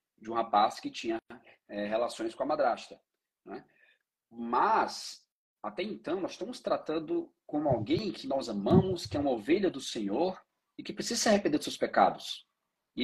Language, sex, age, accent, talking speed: Portuguese, male, 40-59, Brazilian, 170 wpm